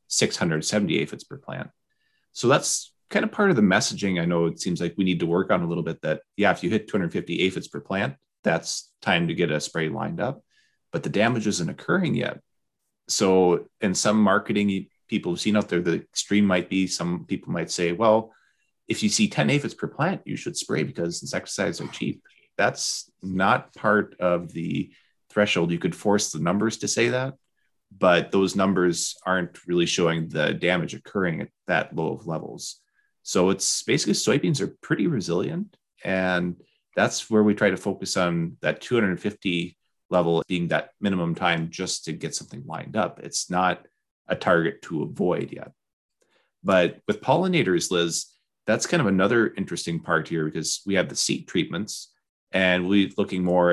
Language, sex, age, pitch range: English, male, 30-49, 85-105 Hz